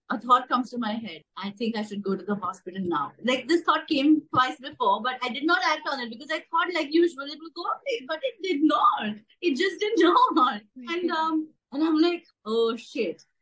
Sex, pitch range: female, 220-325 Hz